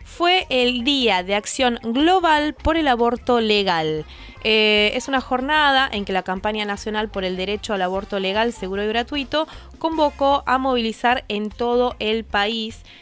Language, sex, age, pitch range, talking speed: Spanish, female, 20-39, 200-250 Hz, 160 wpm